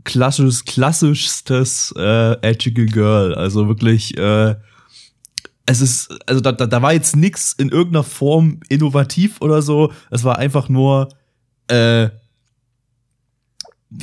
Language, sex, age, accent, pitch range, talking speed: German, male, 20-39, German, 115-140 Hz, 115 wpm